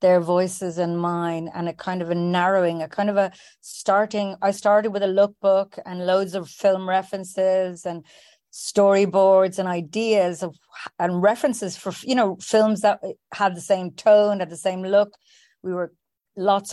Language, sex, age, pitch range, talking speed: English, female, 30-49, 185-215 Hz, 170 wpm